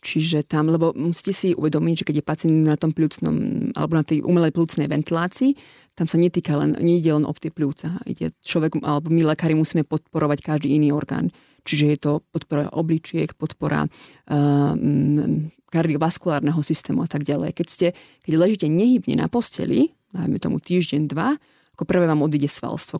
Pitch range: 150-170 Hz